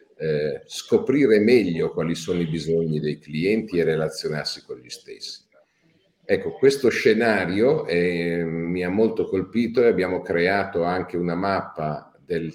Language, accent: Italian, native